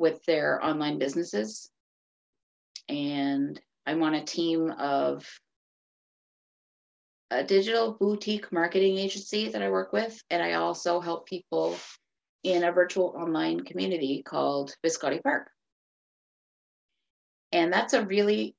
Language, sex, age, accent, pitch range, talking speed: English, female, 30-49, American, 135-185 Hz, 115 wpm